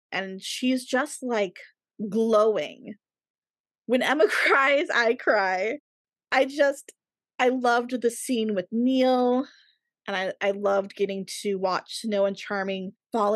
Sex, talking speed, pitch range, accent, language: female, 130 wpm, 200-255 Hz, American, English